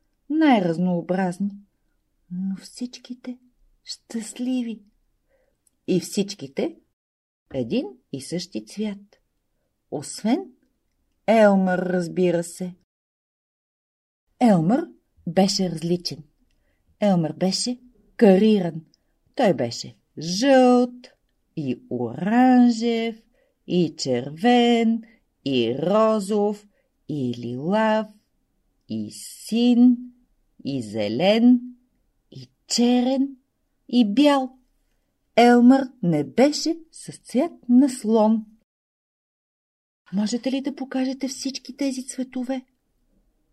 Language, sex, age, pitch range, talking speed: Bulgarian, female, 50-69, 175-250 Hz, 75 wpm